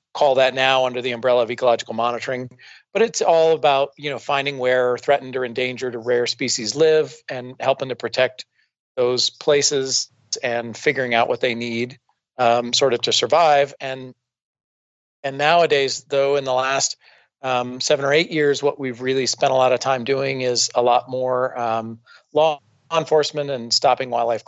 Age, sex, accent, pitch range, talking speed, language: 40-59, male, American, 120-140 Hz, 175 wpm, English